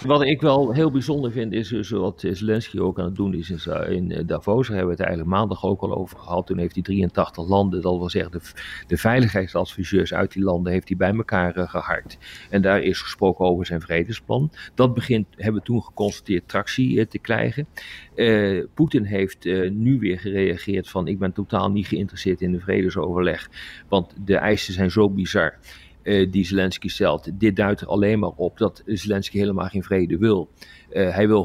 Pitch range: 95-120 Hz